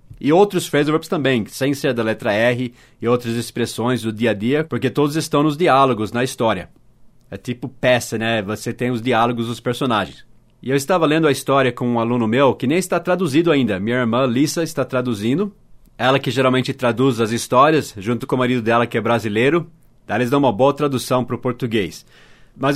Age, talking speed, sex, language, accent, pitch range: 30-49, 205 wpm, male, English, Brazilian, 120-145 Hz